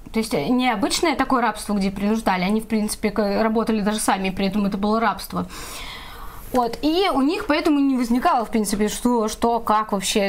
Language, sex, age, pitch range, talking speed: Russian, female, 20-39, 205-250 Hz, 180 wpm